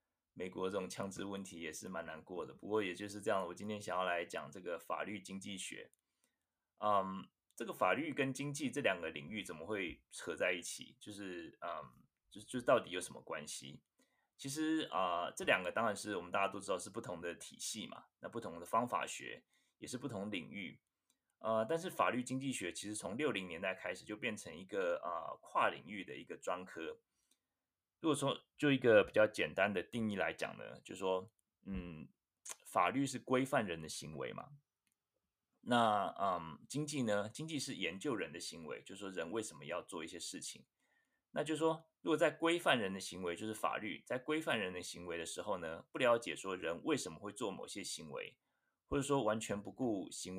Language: Chinese